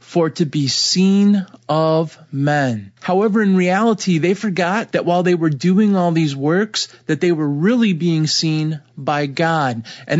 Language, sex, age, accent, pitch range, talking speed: English, male, 30-49, American, 140-180 Hz, 165 wpm